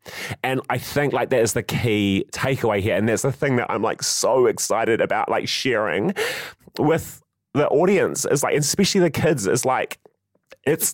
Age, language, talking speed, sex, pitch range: 30-49, English, 180 wpm, male, 110-145 Hz